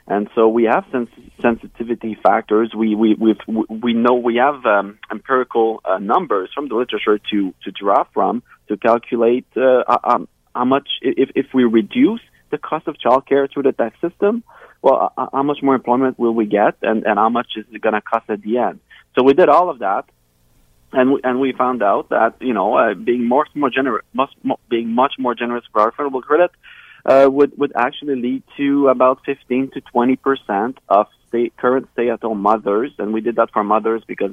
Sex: male